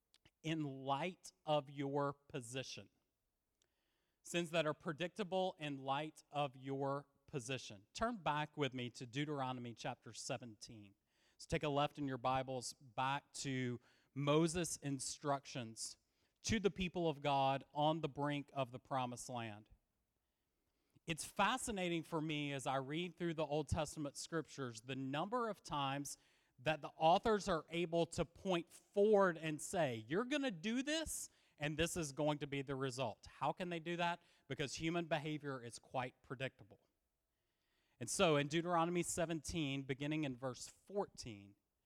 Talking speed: 150 wpm